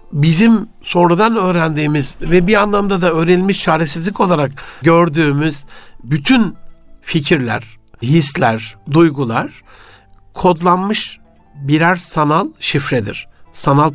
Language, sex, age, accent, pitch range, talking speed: Turkish, male, 60-79, native, 130-175 Hz, 85 wpm